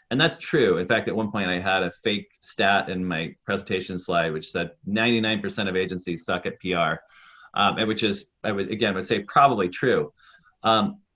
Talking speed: 200 wpm